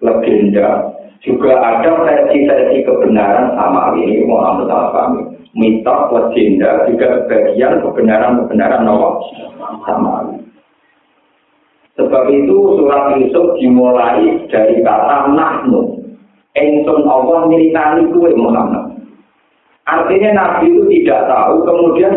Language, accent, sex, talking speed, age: Indonesian, native, male, 80 wpm, 50-69